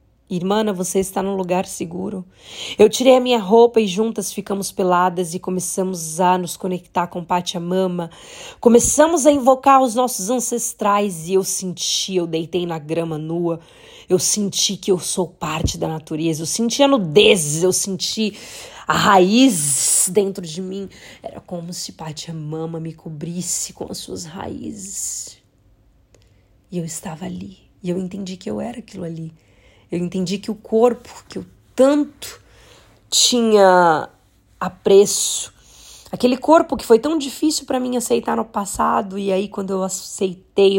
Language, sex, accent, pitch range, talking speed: Portuguese, female, Brazilian, 175-210 Hz, 155 wpm